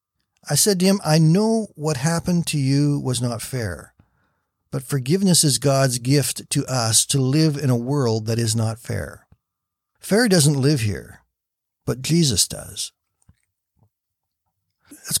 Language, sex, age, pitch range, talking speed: English, male, 60-79, 105-140 Hz, 145 wpm